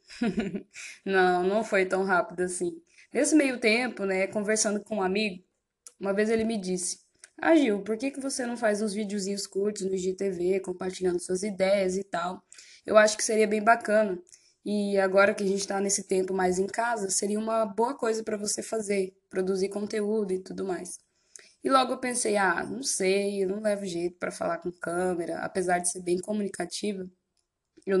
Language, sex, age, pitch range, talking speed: Portuguese, female, 10-29, 185-220 Hz, 185 wpm